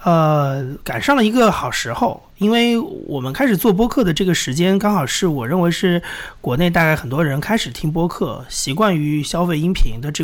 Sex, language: male, Chinese